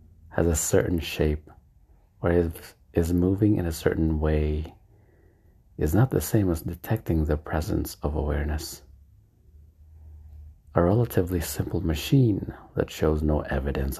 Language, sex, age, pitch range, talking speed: English, male, 50-69, 75-90 Hz, 125 wpm